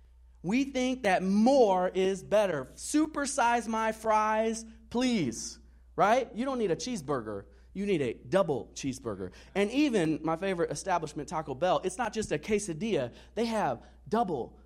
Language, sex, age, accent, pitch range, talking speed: English, male, 30-49, American, 120-200 Hz, 145 wpm